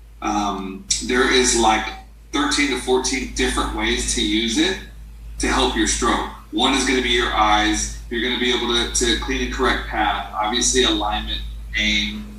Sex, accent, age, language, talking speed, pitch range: male, American, 40-59, English, 180 wpm, 105-120 Hz